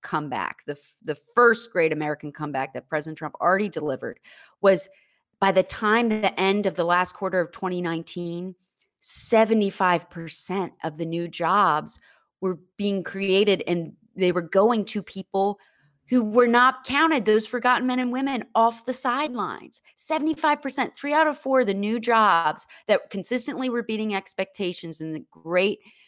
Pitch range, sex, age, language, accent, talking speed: 175-235 Hz, female, 30-49, English, American, 155 wpm